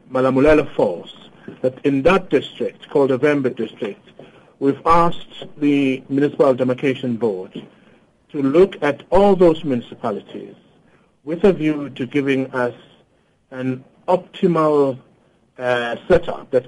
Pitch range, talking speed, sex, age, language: 130-165 Hz, 115 wpm, male, 60-79, English